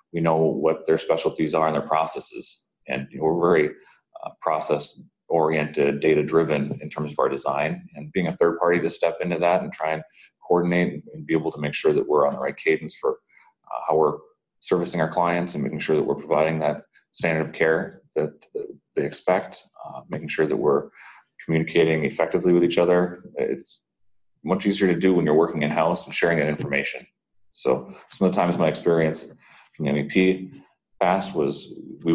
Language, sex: English, male